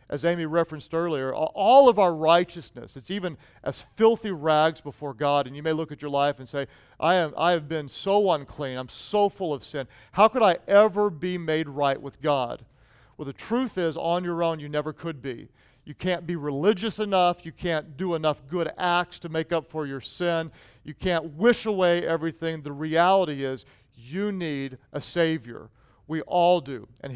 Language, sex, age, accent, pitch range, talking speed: English, male, 40-59, American, 140-180 Hz, 195 wpm